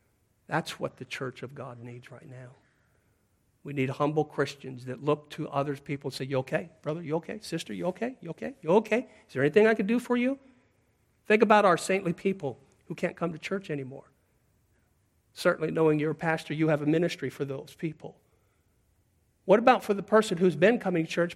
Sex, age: male, 50-69